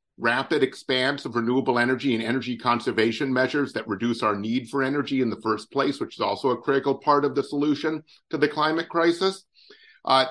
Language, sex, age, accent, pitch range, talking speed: English, male, 50-69, American, 120-145 Hz, 190 wpm